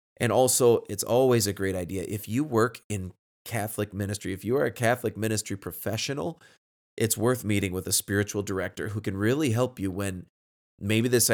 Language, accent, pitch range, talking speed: English, American, 95-115 Hz, 185 wpm